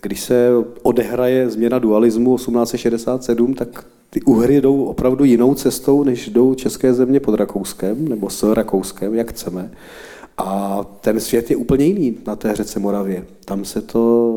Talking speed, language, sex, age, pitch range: 155 wpm, Czech, male, 40-59, 110-125 Hz